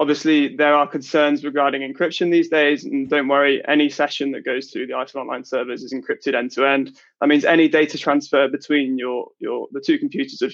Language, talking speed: English, 200 wpm